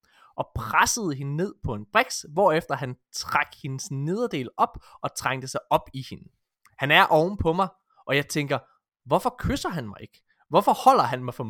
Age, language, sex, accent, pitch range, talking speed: 20-39, Danish, male, native, 120-165 Hz, 195 wpm